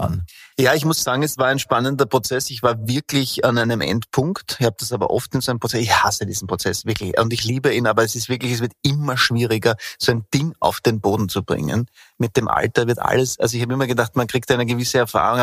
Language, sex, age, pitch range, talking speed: German, male, 30-49, 115-135 Hz, 250 wpm